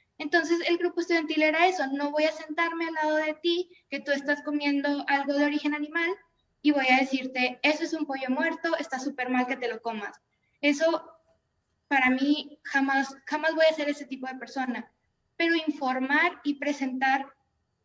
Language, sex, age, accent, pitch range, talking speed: Spanish, female, 20-39, Mexican, 260-320 Hz, 180 wpm